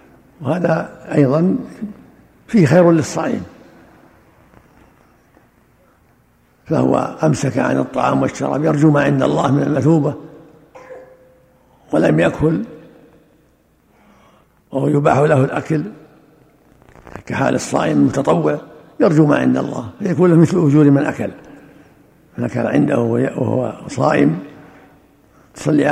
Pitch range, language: 125-155 Hz, Arabic